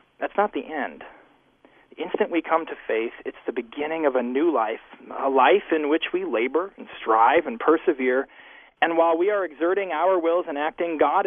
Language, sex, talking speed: English, male, 195 wpm